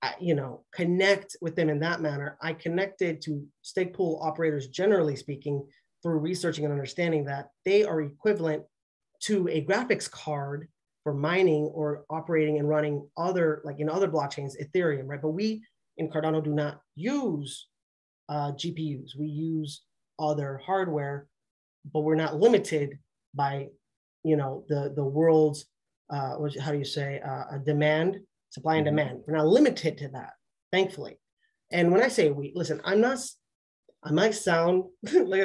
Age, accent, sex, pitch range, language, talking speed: 30-49, American, male, 145-185 Hz, English, 160 wpm